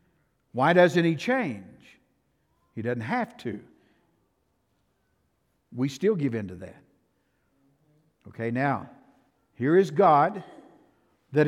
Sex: male